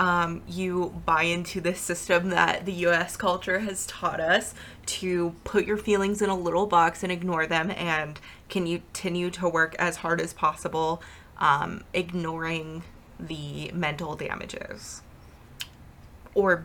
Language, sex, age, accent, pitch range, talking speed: English, female, 20-39, American, 160-185 Hz, 145 wpm